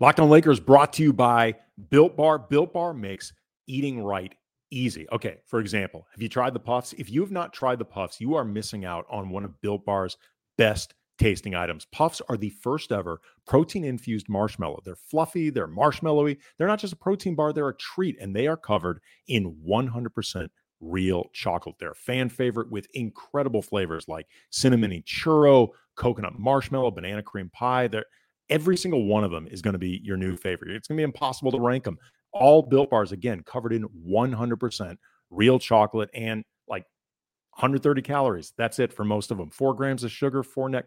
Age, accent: 40-59, American